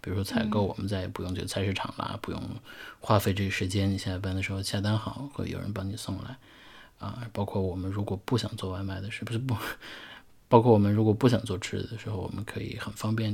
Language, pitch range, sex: Chinese, 100-120 Hz, male